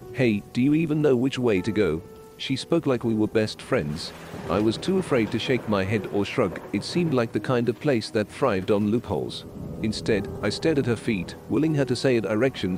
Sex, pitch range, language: male, 100-125 Hz, English